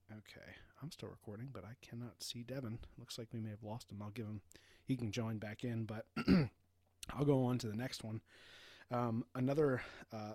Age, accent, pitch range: 30-49, American, 95-120 Hz